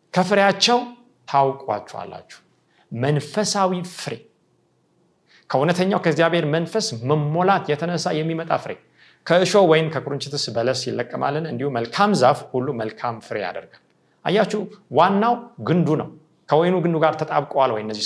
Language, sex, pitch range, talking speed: Amharic, male, 135-195 Hz, 110 wpm